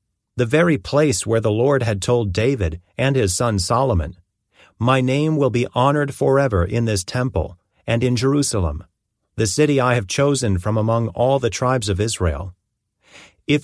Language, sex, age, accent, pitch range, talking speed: English, male, 40-59, American, 95-130 Hz, 165 wpm